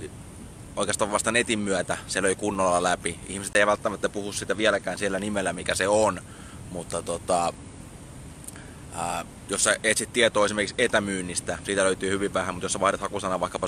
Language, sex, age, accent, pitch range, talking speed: Finnish, male, 20-39, native, 90-110 Hz, 165 wpm